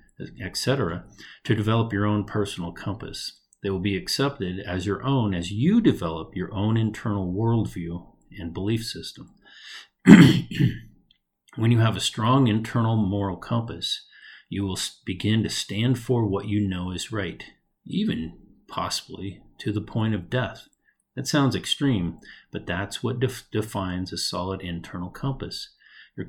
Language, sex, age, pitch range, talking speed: English, male, 40-59, 95-120 Hz, 140 wpm